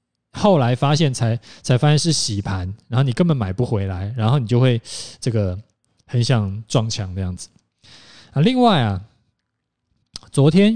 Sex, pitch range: male, 110-145 Hz